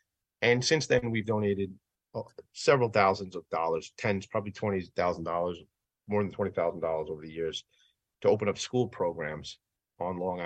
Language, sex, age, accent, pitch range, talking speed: English, male, 30-49, American, 95-125 Hz, 145 wpm